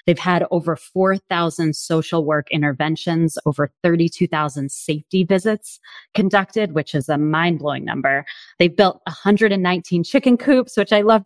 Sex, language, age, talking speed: female, English, 20-39, 135 wpm